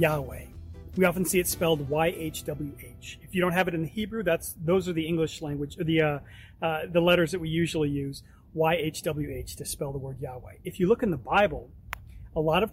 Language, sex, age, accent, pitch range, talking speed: English, male, 40-59, American, 145-175 Hz, 210 wpm